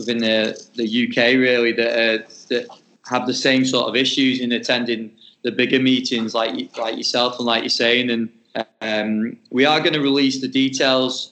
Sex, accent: male, British